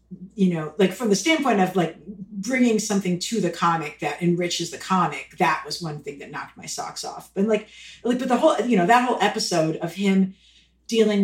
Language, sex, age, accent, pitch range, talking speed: English, female, 50-69, American, 170-205 Hz, 215 wpm